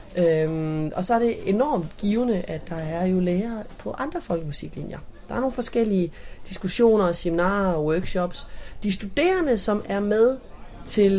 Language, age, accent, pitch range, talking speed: English, 30-49, Danish, 165-210 Hz, 155 wpm